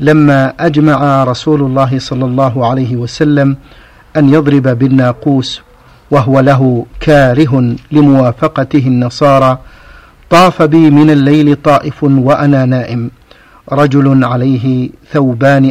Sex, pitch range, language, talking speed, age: male, 130-150 Hz, Arabic, 100 wpm, 50-69